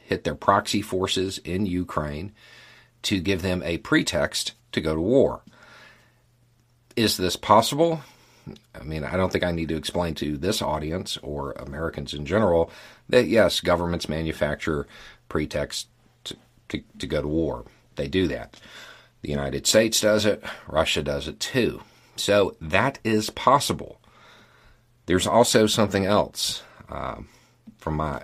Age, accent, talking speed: 50-69, American, 145 wpm